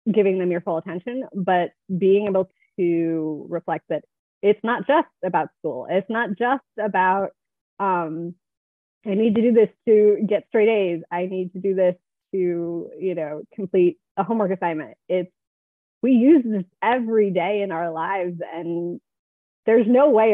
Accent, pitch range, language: American, 170-195 Hz, English